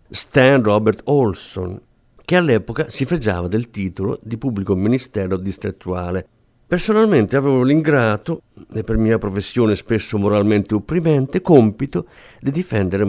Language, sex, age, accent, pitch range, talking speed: Italian, male, 50-69, native, 105-135 Hz, 120 wpm